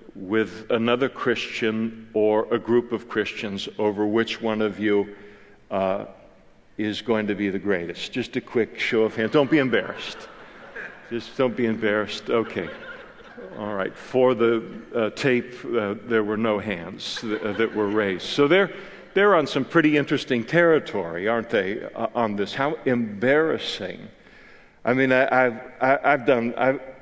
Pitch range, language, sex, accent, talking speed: 110-130 Hz, English, male, American, 160 wpm